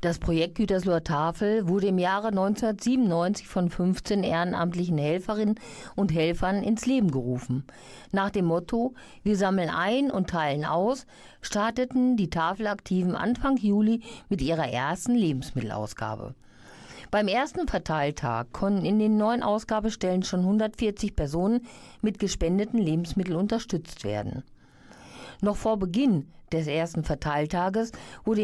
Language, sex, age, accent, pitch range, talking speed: German, female, 50-69, German, 165-220 Hz, 120 wpm